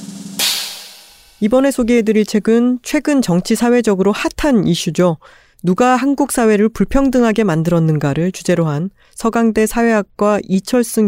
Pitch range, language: 170-230 Hz, Korean